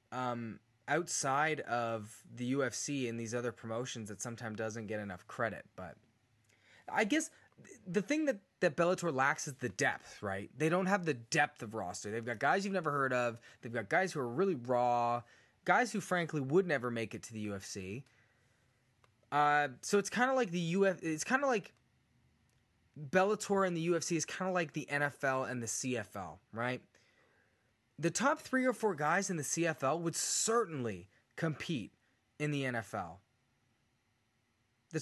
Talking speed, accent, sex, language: 175 wpm, American, male, English